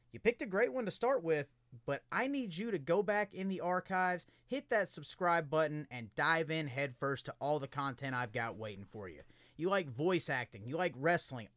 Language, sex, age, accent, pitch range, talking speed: English, male, 30-49, American, 140-220 Hz, 220 wpm